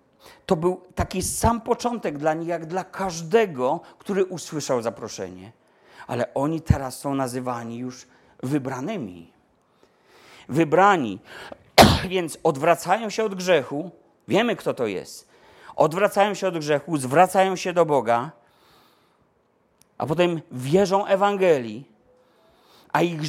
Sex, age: male, 40-59